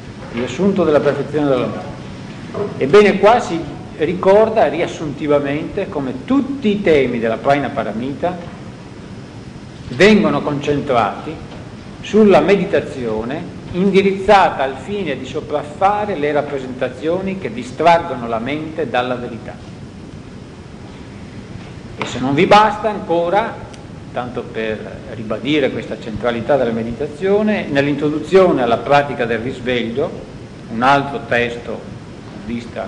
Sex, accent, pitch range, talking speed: male, native, 130-195 Hz, 100 wpm